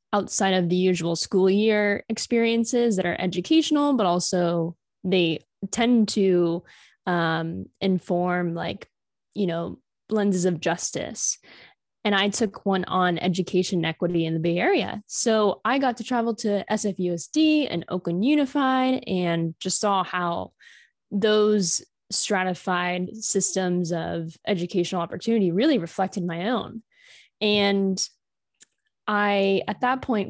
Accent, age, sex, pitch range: American, 10-29, female, 180-220 Hz